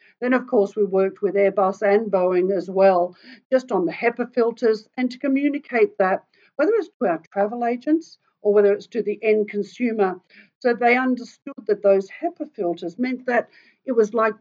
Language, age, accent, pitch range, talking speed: English, 50-69, Australian, 195-250 Hz, 185 wpm